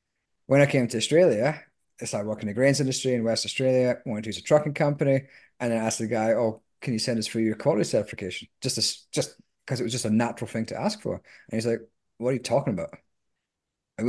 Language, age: English, 30-49